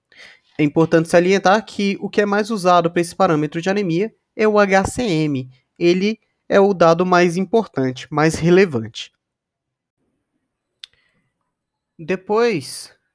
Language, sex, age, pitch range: Portuguese, male, 20-39, 160-220 Hz